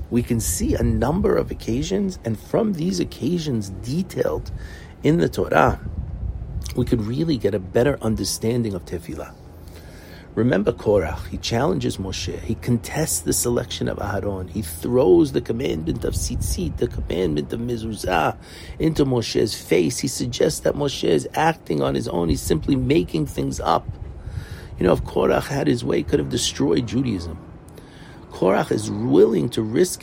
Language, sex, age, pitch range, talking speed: English, male, 50-69, 80-120 Hz, 160 wpm